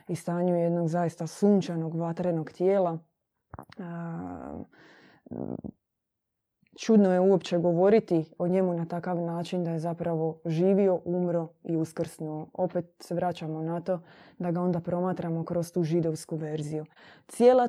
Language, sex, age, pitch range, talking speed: Croatian, female, 20-39, 170-195 Hz, 125 wpm